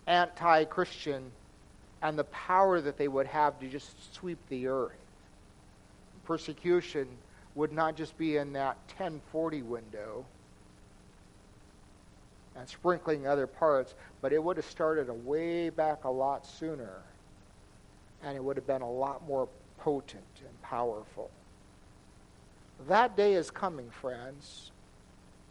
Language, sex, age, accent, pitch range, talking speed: English, male, 50-69, American, 135-170 Hz, 120 wpm